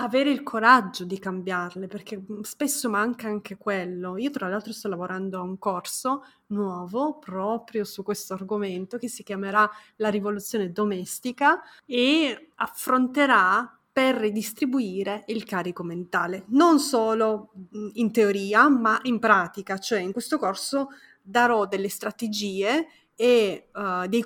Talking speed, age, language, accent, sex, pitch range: 130 wpm, 30-49, Italian, native, female, 200-255 Hz